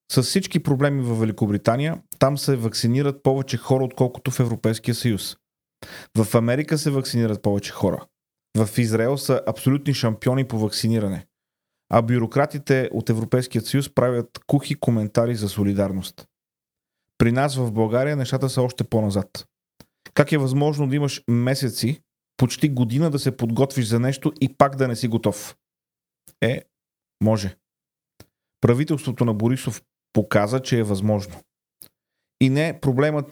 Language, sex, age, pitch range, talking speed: Bulgarian, male, 30-49, 110-135 Hz, 135 wpm